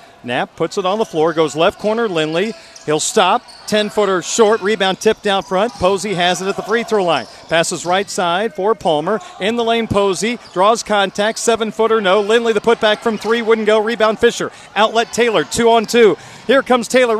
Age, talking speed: 40-59, 185 wpm